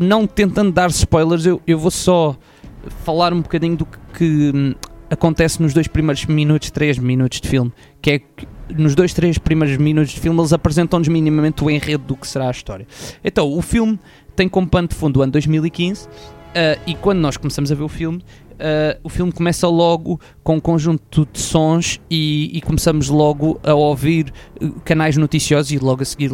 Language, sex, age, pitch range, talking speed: Portuguese, male, 20-39, 140-170 Hz, 195 wpm